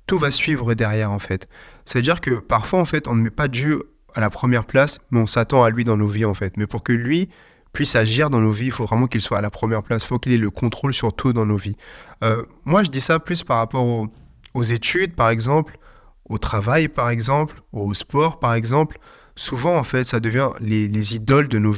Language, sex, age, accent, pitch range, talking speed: French, male, 30-49, French, 110-135 Hz, 250 wpm